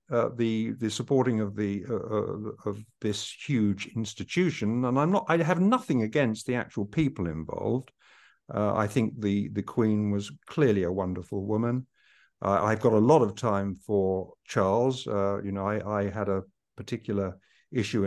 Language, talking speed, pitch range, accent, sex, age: English, 175 wpm, 100-115 Hz, British, male, 50-69